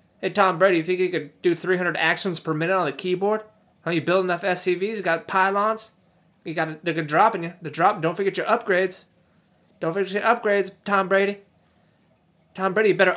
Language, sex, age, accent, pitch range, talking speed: English, male, 20-39, American, 140-190 Hz, 205 wpm